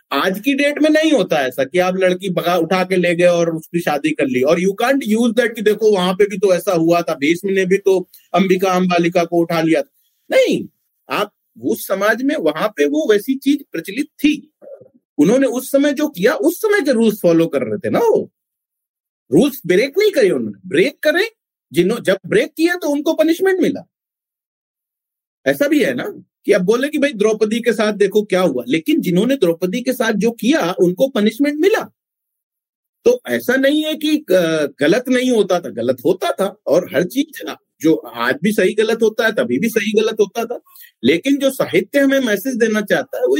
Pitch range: 180-285 Hz